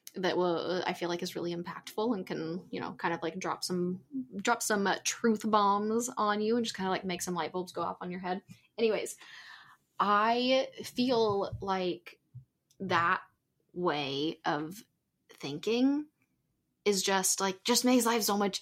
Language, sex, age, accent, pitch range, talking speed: English, female, 10-29, American, 175-220 Hz, 175 wpm